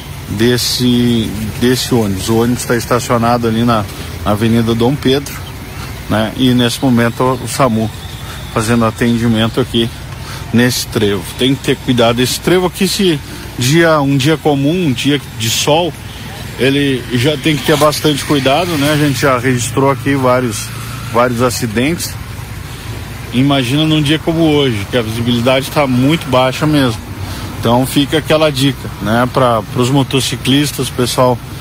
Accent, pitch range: Brazilian, 120-140 Hz